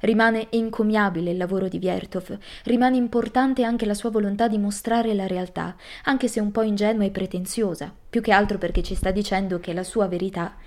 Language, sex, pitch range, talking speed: Italian, female, 185-225 Hz, 190 wpm